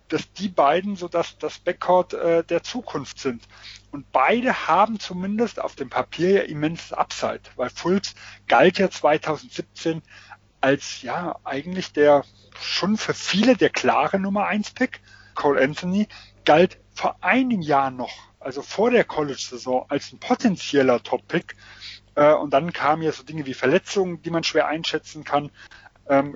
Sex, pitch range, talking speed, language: male, 130-180 Hz, 155 wpm, German